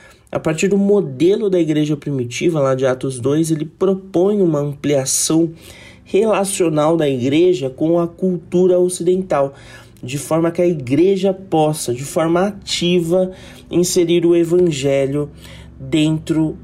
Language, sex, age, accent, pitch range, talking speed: Portuguese, male, 30-49, Brazilian, 135-175 Hz, 125 wpm